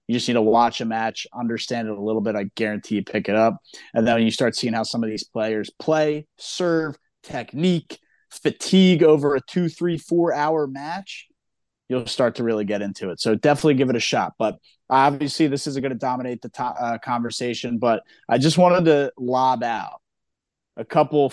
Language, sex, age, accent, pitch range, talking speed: English, male, 30-49, American, 115-150 Hz, 200 wpm